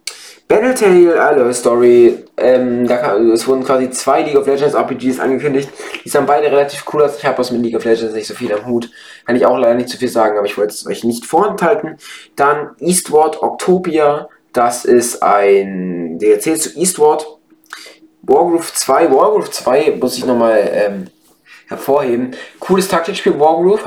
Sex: male